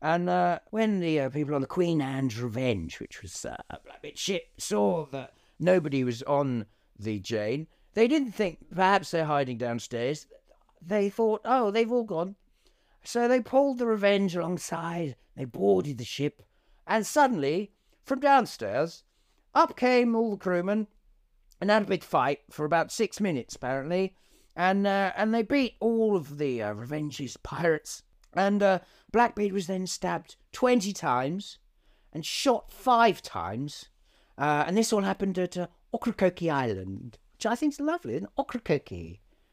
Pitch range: 140-210 Hz